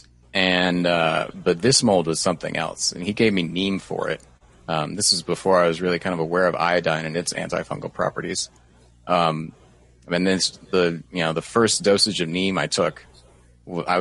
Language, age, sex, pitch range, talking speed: English, 30-49, male, 80-95 Hz, 195 wpm